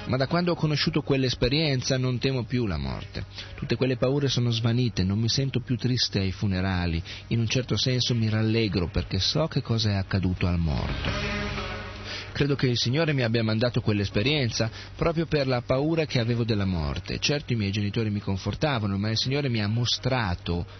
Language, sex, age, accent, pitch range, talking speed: Italian, male, 40-59, native, 95-125 Hz, 190 wpm